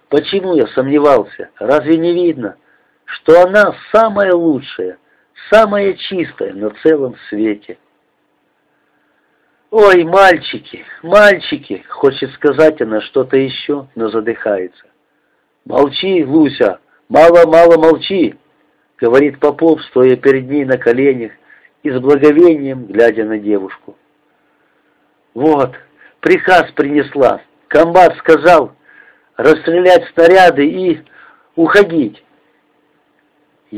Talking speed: 90 wpm